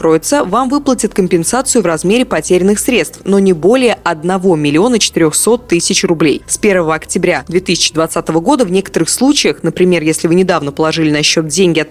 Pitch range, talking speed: 165-215 Hz, 155 wpm